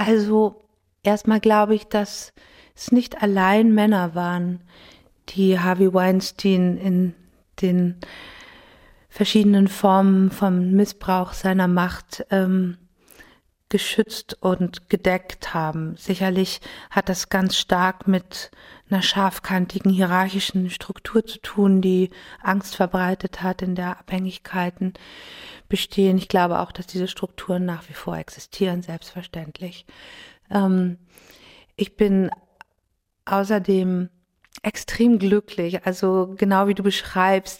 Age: 50-69